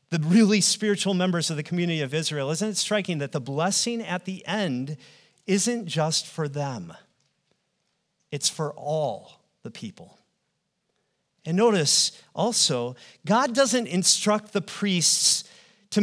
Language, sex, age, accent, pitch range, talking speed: English, male, 40-59, American, 155-210 Hz, 135 wpm